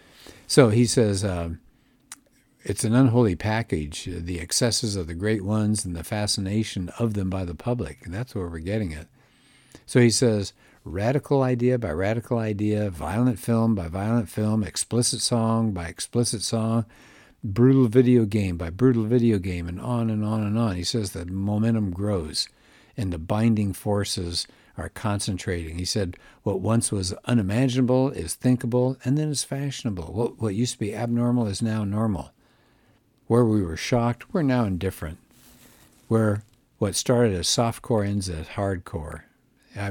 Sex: male